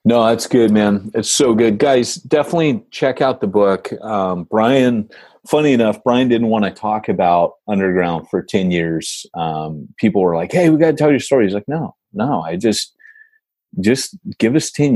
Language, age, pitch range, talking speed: English, 30-49, 85-120 Hz, 195 wpm